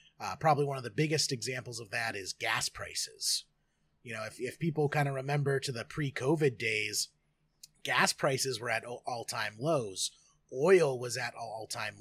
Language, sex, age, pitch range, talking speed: English, male, 30-49, 120-145 Hz, 180 wpm